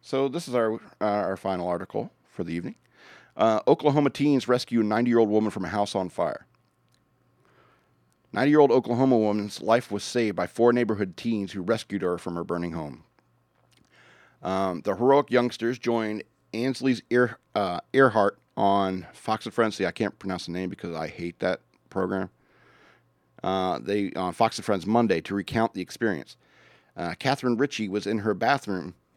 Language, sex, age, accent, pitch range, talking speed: English, male, 40-59, American, 95-120 Hz, 165 wpm